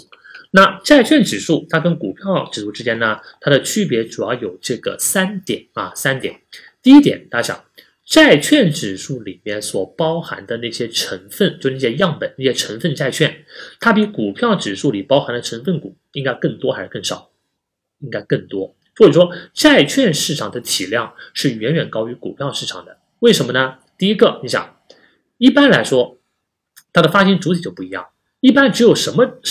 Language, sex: Chinese, male